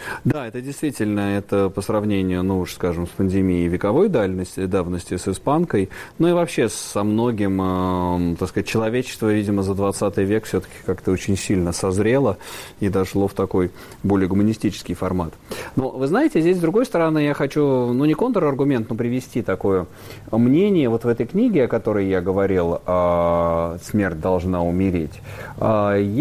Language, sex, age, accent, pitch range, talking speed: Russian, male, 30-49, native, 95-120 Hz, 155 wpm